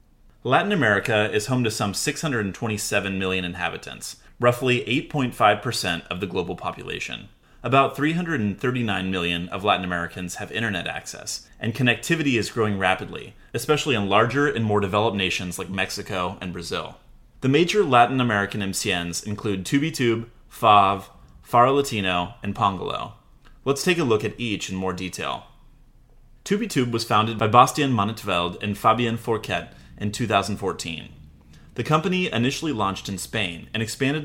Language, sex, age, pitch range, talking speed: English, male, 30-49, 95-130 Hz, 140 wpm